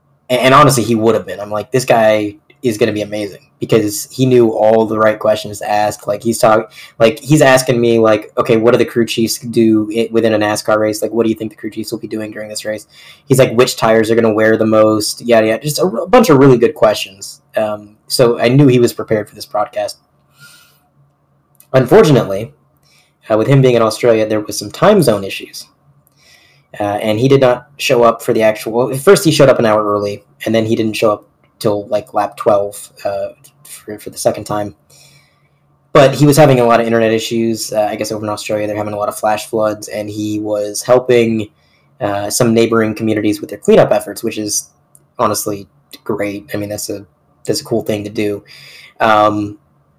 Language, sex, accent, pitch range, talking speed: English, male, American, 105-120 Hz, 220 wpm